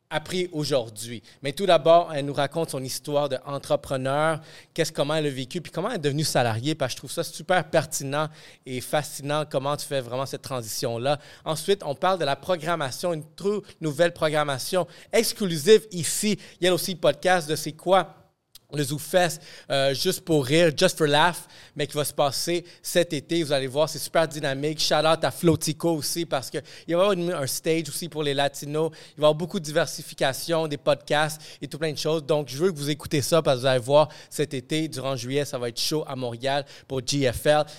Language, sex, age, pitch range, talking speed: French, male, 30-49, 140-170 Hz, 220 wpm